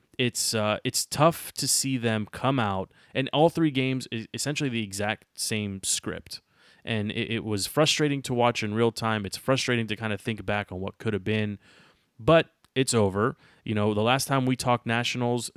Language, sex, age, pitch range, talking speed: English, male, 30-49, 105-125 Hz, 200 wpm